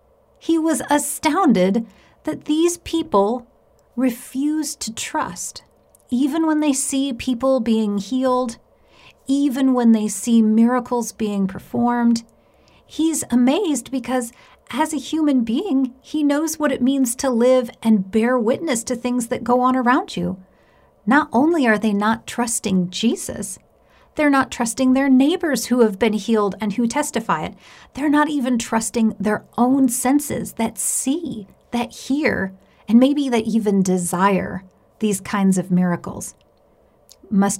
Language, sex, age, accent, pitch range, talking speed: English, female, 40-59, American, 205-265 Hz, 140 wpm